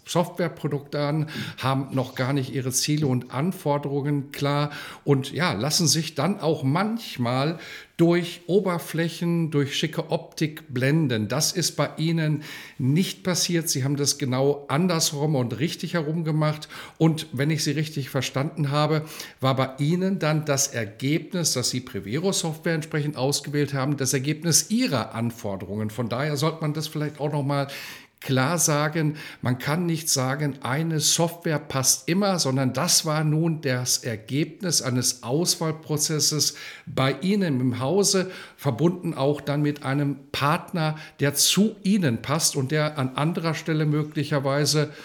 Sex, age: male, 50-69